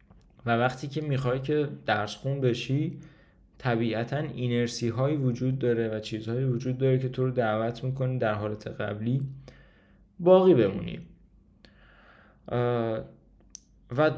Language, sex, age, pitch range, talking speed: Persian, male, 20-39, 110-135 Hz, 120 wpm